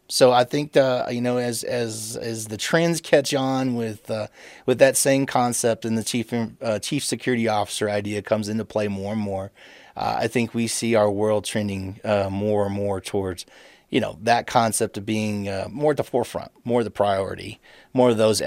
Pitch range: 105-120 Hz